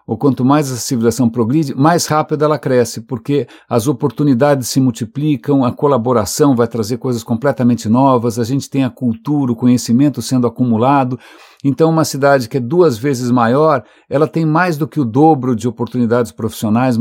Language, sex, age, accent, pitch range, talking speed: English, male, 60-79, Brazilian, 120-155 Hz, 175 wpm